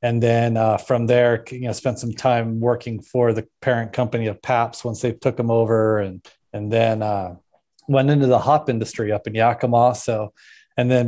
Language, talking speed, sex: English, 200 wpm, male